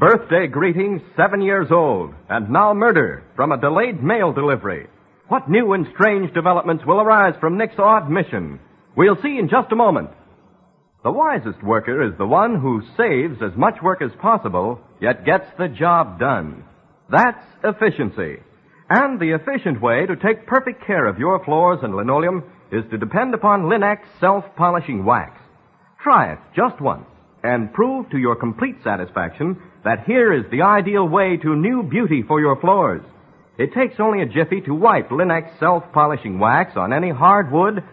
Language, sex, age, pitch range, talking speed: English, male, 50-69, 155-215 Hz, 165 wpm